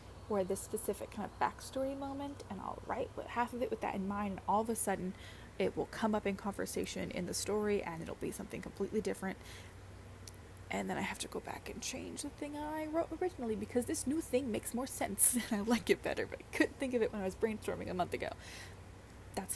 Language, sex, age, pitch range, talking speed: English, female, 20-39, 185-235 Hz, 240 wpm